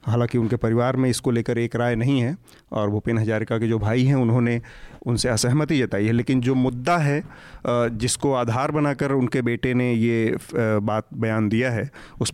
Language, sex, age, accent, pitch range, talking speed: Hindi, male, 30-49, native, 115-135 Hz, 185 wpm